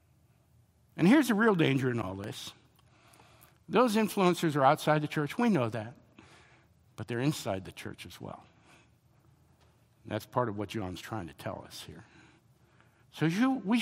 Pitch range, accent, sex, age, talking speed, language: 125-185 Hz, American, male, 60-79, 155 wpm, English